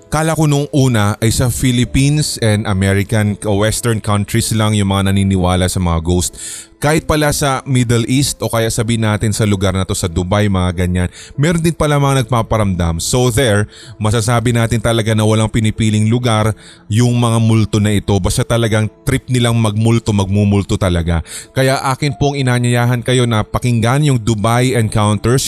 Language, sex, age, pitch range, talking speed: Filipino, male, 20-39, 105-125 Hz, 170 wpm